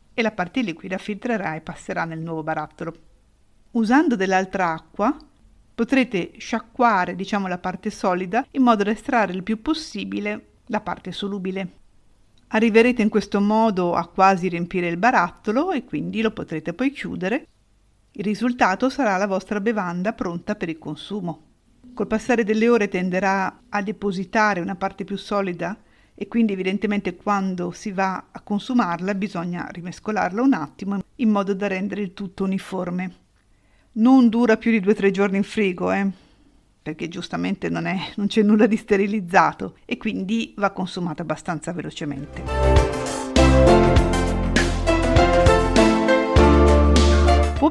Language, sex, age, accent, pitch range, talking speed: Italian, female, 50-69, native, 175-220 Hz, 135 wpm